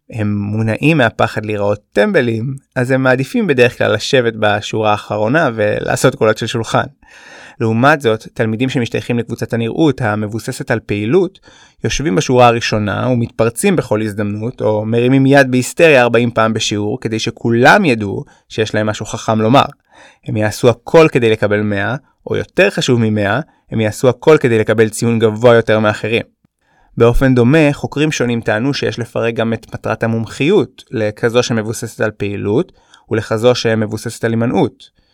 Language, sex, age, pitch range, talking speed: Hebrew, male, 20-39, 110-130 Hz, 145 wpm